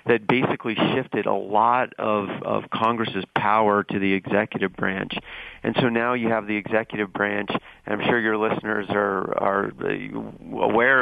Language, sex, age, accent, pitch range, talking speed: English, male, 40-59, American, 100-115 Hz, 160 wpm